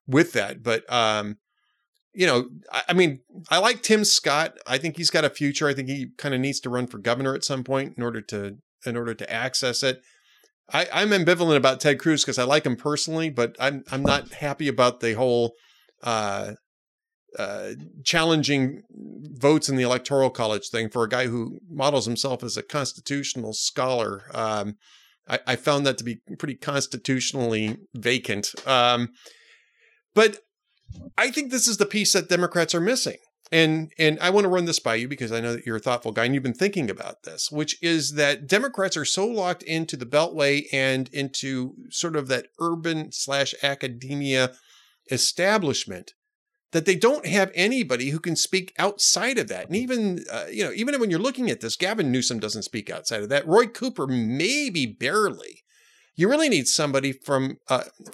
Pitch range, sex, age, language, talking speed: 125-185 Hz, male, 30-49, English, 185 wpm